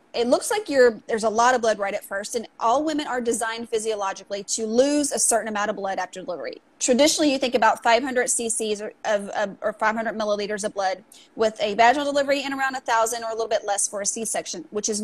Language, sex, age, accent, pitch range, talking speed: English, female, 30-49, American, 220-275 Hz, 220 wpm